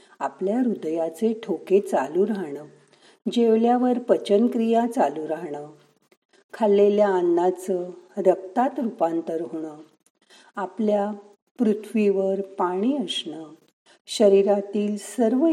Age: 50-69